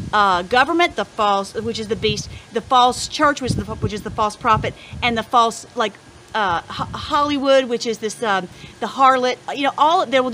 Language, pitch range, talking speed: English, 210-275 Hz, 205 wpm